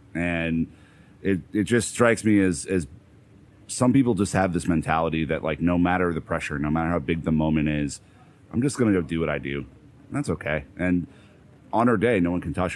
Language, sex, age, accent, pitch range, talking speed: English, male, 30-49, American, 80-95 Hz, 220 wpm